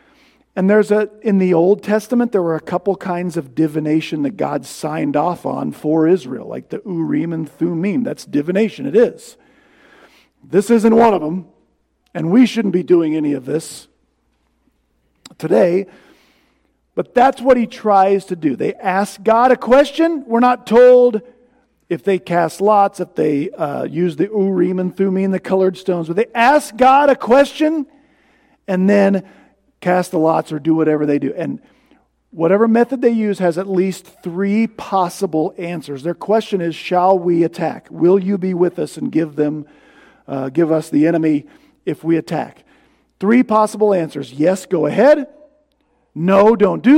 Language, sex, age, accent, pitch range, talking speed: English, male, 50-69, American, 165-230 Hz, 170 wpm